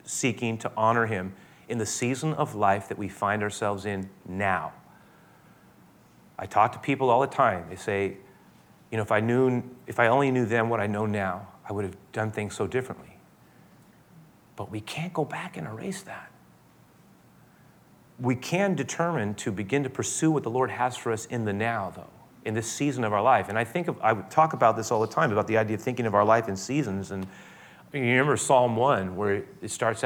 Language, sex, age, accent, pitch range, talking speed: English, male, 30-49, American, 105-130 Hz, 210 wpm